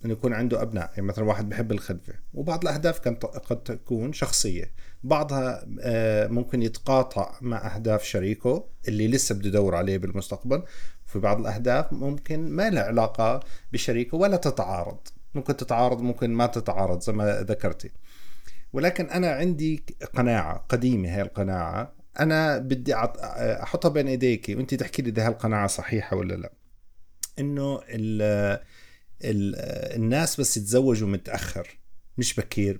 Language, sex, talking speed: Arabic, male, 130 wpm